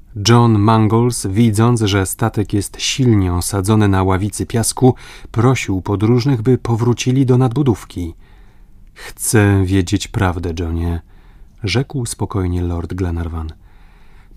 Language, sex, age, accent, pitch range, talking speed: Polish, male, 30-49, native, 95-115 Hz, 115 wpm